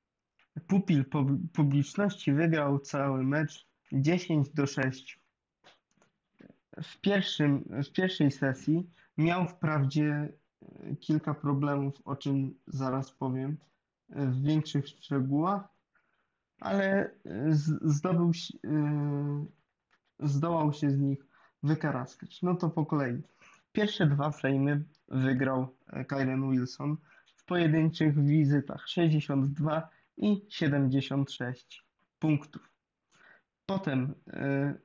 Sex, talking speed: male, 90 wpm